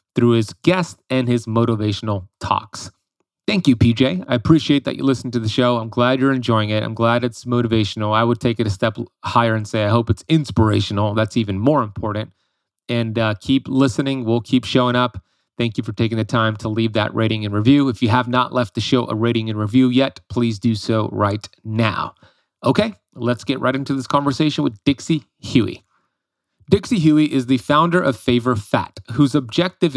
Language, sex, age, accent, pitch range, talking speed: English, male, 30-49, American, 110-140 Hz, 200 wpm